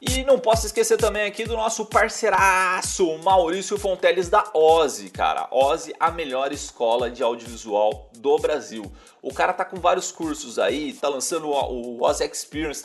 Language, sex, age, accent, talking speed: Portuguese, male, 30-49, Brazilian, 165 wpm